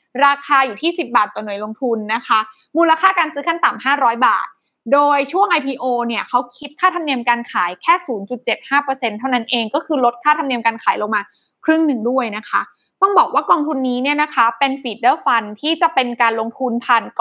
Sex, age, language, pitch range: female, 20-39, Thai, 240-300 Hz